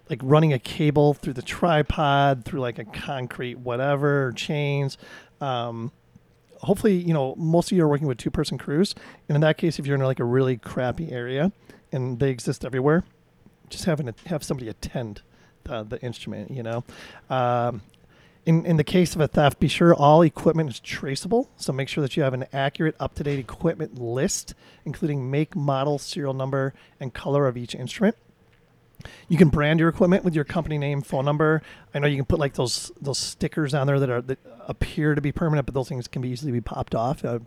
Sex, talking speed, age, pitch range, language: male, 205 wpm, 30-49, 130-160 Hz, English